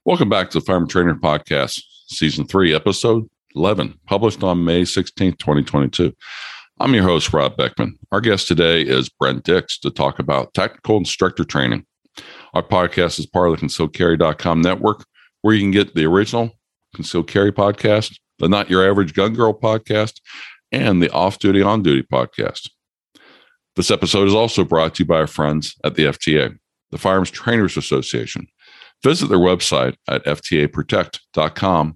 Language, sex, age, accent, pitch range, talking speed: English, male, 50-69, American, 80-100 Hz, 160 wpm